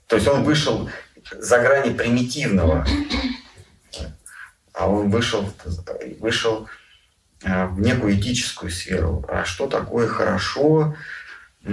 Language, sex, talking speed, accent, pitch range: Russian, male, 95 wpm, native, 95-140 Hz